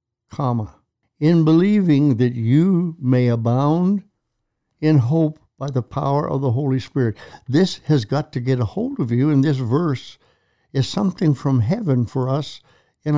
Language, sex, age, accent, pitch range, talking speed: English, male, 60-79, American, 120-155 Hz, 160 wpm